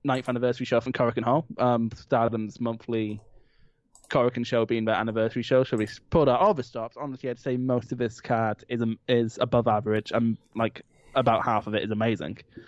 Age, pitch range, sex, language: 20-39, 115-140 Hz, male, English